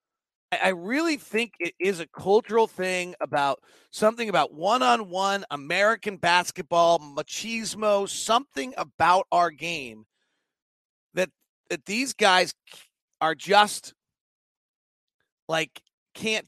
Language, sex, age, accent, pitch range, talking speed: English, male, 40-59, American, 185-250 Hz, 100 wpm